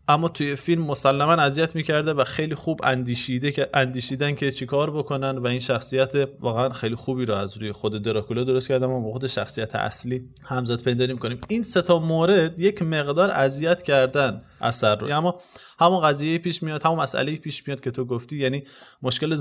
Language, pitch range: Persian, 120-160 Hz